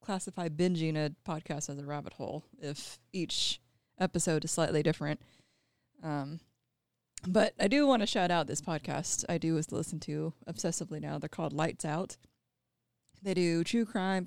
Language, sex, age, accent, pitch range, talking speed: English, female, 20-39, American, 140-185 Hz, 165 wpm